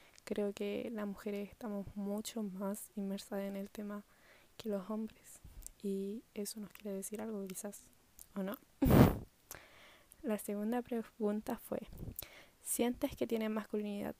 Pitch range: 200-225 Hz